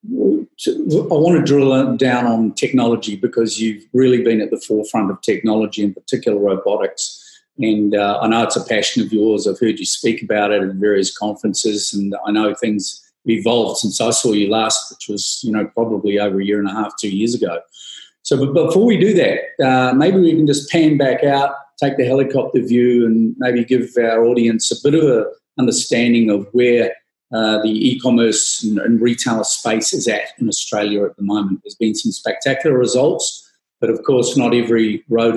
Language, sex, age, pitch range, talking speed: English, male, 40-59, 105-125 Hz, 200 wpm